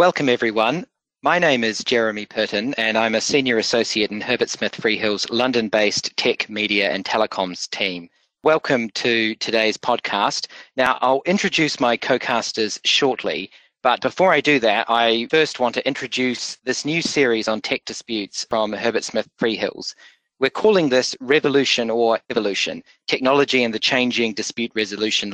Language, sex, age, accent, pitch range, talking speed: English, male, 40-59, Australian, 110-130 Hz, 150 wpm